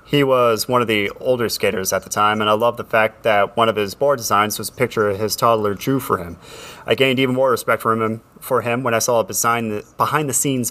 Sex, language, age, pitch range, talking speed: male, English, 30-49, 110-130 Hz, 245 wpm